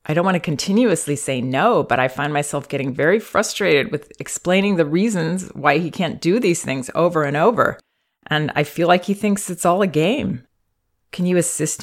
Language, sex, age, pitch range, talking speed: English, female, 40-59, 135-170 Hz, 205 wpm